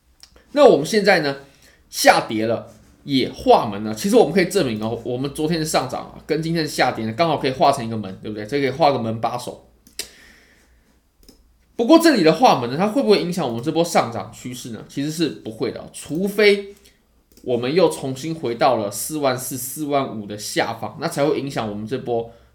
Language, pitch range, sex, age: Chinese, 110-170 Hz, male, 20-39